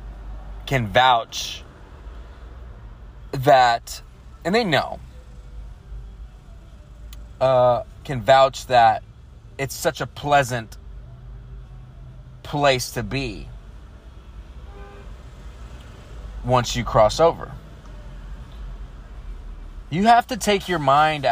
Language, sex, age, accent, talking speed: English, male, 30-49, American, 75 wpm